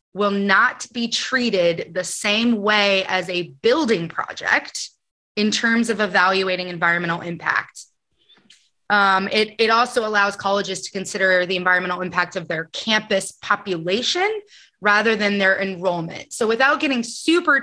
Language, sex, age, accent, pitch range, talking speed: English, female, 20-39, American, 185-225 Hz, 135 wpm